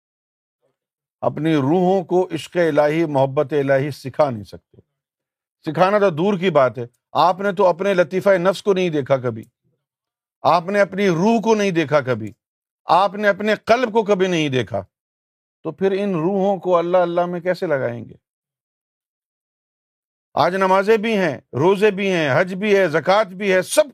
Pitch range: 150-200 Hz